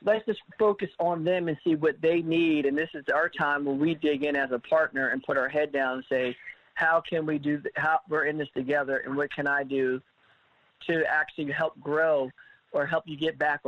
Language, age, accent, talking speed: English, 40-59, American, 230 wpm